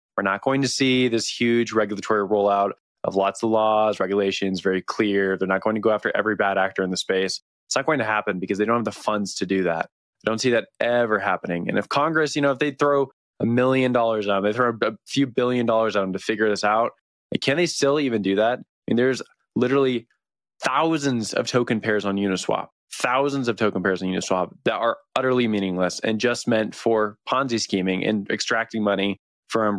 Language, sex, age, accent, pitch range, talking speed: English, male, 20-39, American, 100-120 Hz, 220 wpm